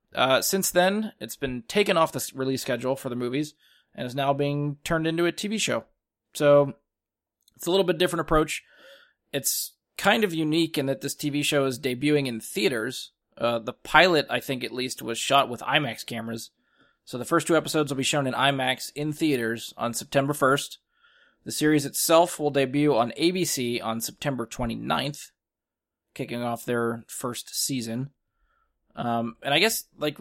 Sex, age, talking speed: male, 20-39, 175 wpm